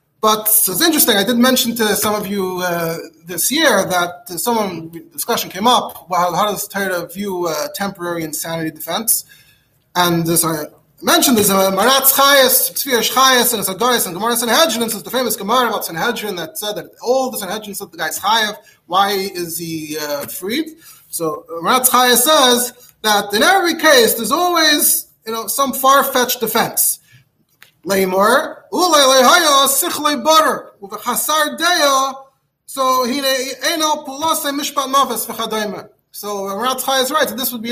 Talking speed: 145 wpm